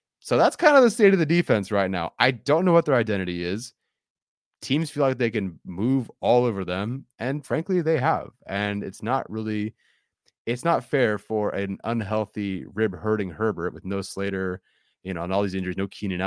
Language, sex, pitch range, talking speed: English, male, 95-120 Hz, 205 wpm